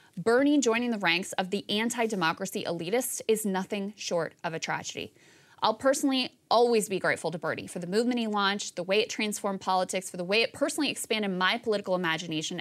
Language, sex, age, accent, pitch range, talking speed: English, female, 30-49, American, 185-230 Hz, 190 wpm